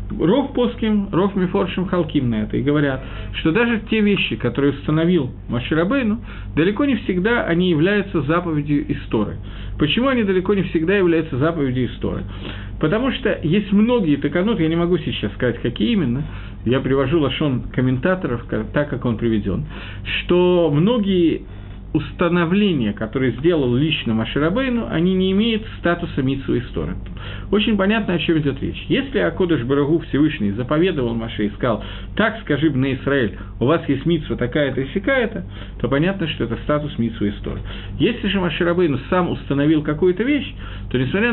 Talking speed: 155 wpm